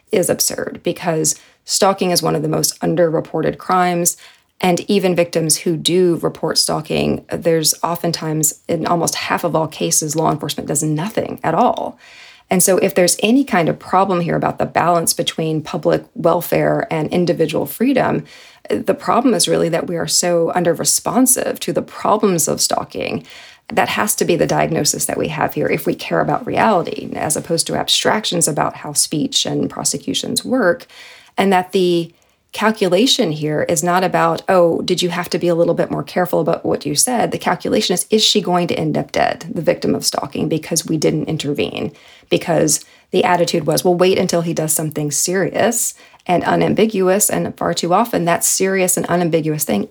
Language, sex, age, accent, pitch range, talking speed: English, female, 30-49, American, 165-190 Hz, 185 wpm